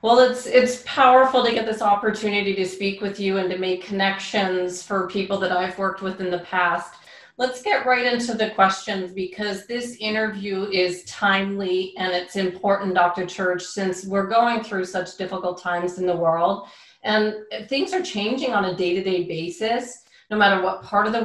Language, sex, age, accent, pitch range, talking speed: English, female, 30-49, American, 185-220 Hz, 185 wpm